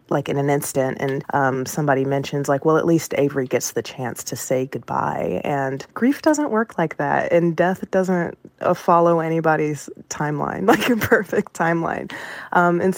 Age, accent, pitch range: 20-39, American, 145-180 Hz